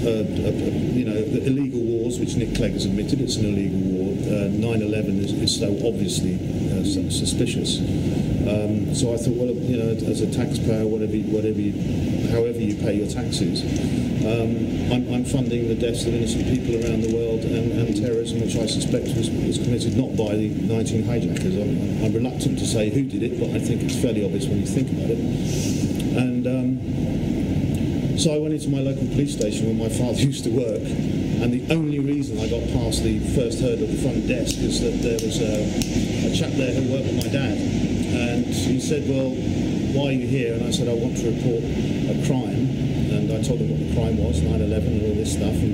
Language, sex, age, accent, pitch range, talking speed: English, male, 50-69, British, 105-130 Hz, 210 wpm